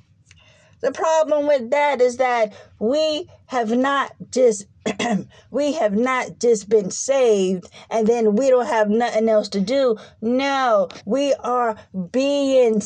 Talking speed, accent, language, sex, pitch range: 135 wpm, American, English, female, 200-255 Hz